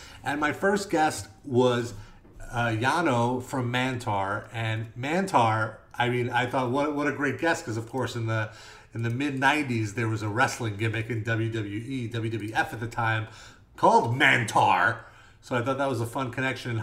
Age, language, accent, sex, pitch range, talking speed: 30-49, English, American, male, 115-150 Hz, 180 wpm